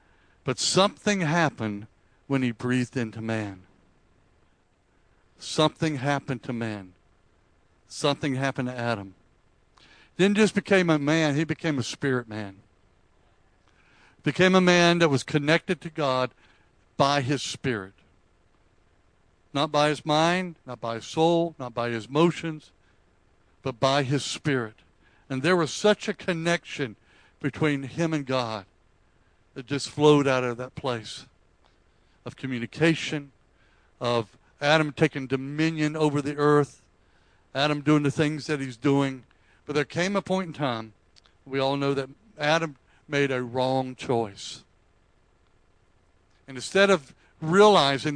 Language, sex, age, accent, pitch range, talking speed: English, male, 60-79, American, 105-155 Hz, 135 wpm